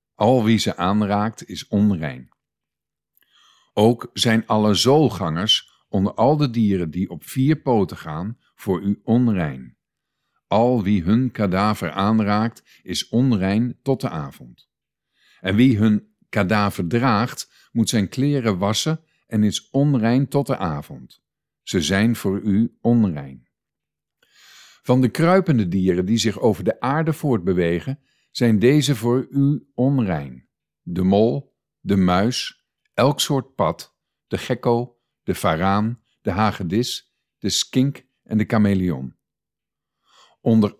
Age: 50-69